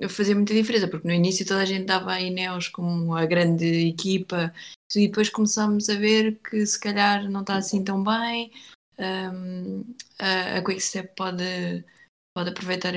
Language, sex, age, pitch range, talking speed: Portuguese, female, 20-39, 180-195 Hz, 170 wpm